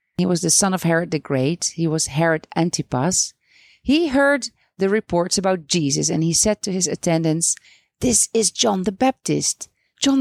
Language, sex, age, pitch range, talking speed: English, female, 40-59, 160-225 Hz, 175 wpm